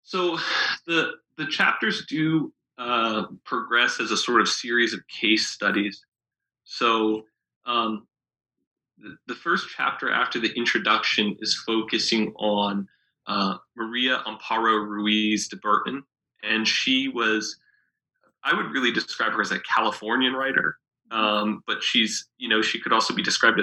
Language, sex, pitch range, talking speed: English, male, 105-130 Hz, 140 wpm